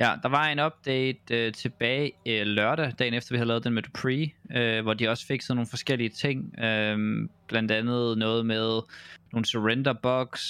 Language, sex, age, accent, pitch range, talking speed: Danish, male, 20-39, native, 110-135 Hz, 195 wpm